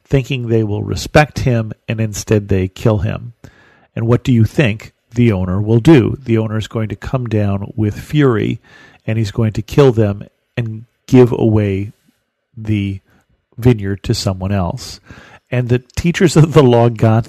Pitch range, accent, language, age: 105-130 Hz, American, English, 40-59